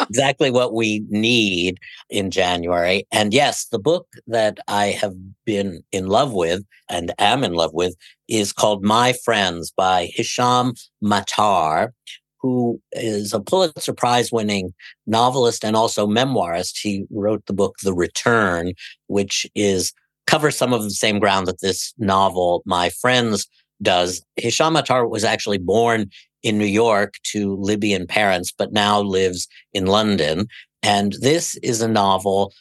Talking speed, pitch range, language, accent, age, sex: 145 wpm, 95-115 Hz, English, American, 50-69, male